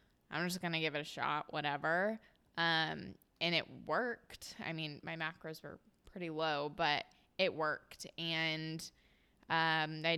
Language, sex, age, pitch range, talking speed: English, female, 20-39, 155-195 Hz, 155 wpm